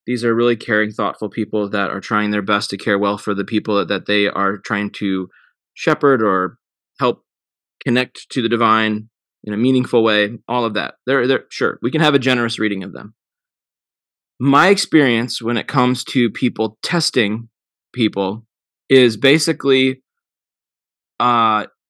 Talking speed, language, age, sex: 160 wpm, English, 20-39, male